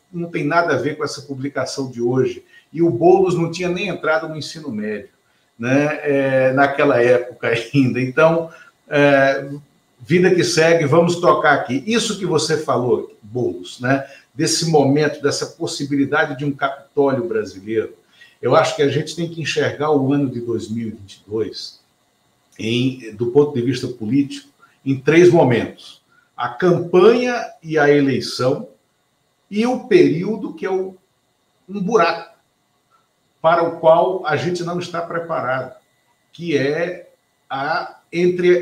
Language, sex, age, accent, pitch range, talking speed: Portuguese, male, 60-79, Brazilian, 140-180 Hz, 145 wpm